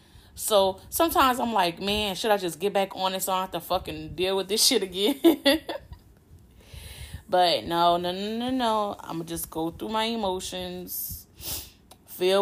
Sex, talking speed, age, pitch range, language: female, 170 wpm, 10-29, 155-190 Hz, English